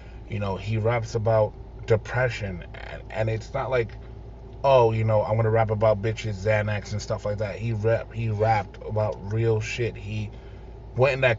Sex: male